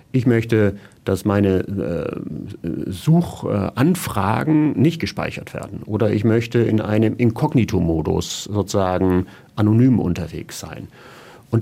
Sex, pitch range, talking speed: male, 100-130 Hz, 110 wpm